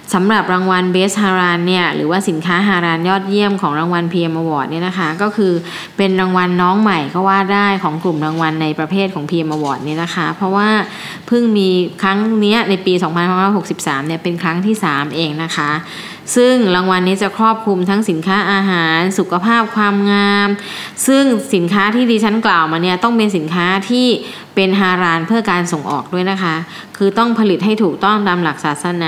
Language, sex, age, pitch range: Thai, female, 20-39, 170-205 Hz